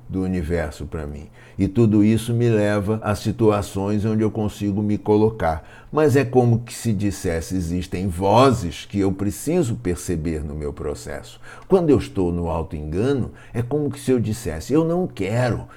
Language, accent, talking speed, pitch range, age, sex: Portuguese, Brazilian, 170 wpm, 90-125 Hz, 60-79, male